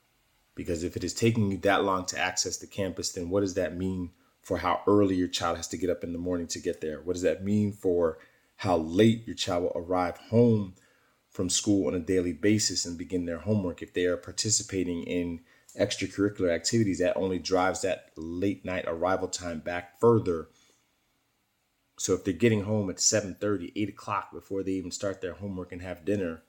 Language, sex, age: English, male, 30-49